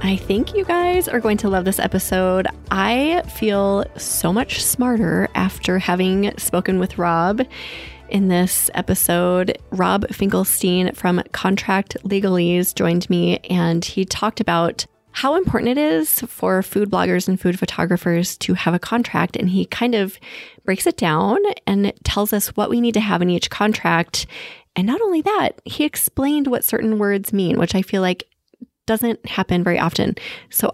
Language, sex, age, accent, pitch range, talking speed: English, female, 20-39, American, 180-225 Hz, 165 wpm